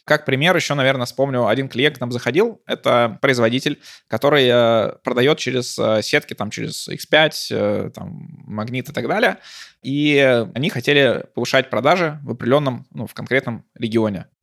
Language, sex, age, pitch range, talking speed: Russian, male, 20-39, 115-135 Hz, 145 wpm